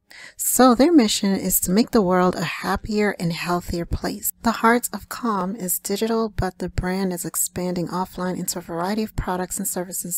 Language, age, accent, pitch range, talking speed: English, 40-59, American, 180-210 Hz, 190 wpm